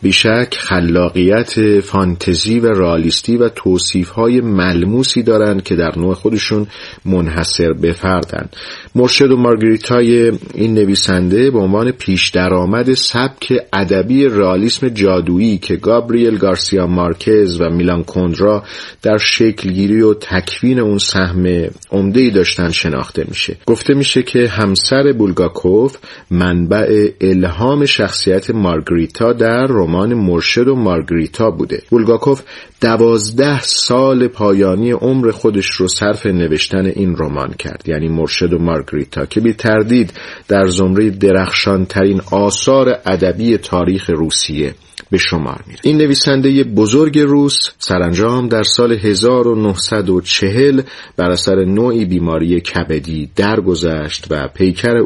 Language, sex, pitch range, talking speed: Persian, male, 90-115 Hz, 115 wpm